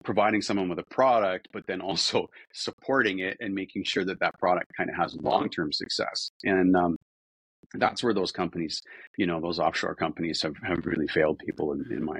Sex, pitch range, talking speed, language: male, 90-105 Hz, 195 wpm, English